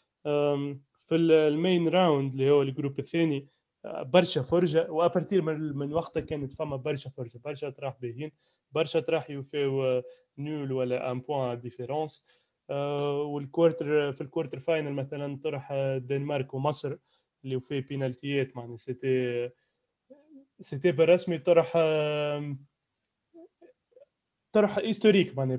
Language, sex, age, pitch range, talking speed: Arabic, male, 20-39, 135-165 Hz, 115 wpm